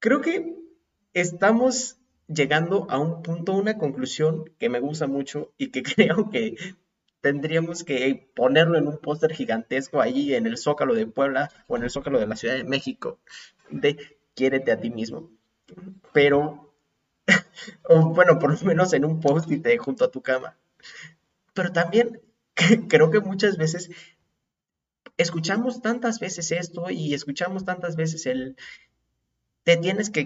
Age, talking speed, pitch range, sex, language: 30-49, 150 wpm, 135-190 Hz, male, Spanish